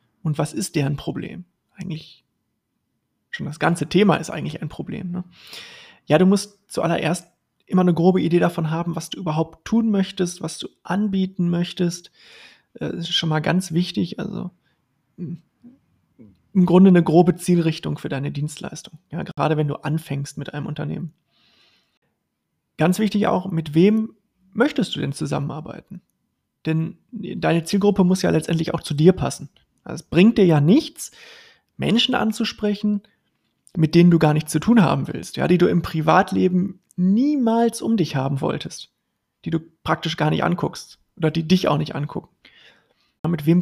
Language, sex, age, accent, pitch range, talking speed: German, male, 30-49, German, 155-195 Hz, 155 wpm